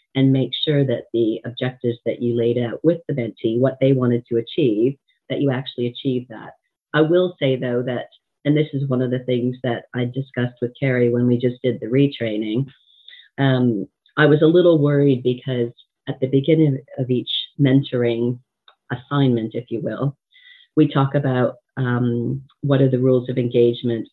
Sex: female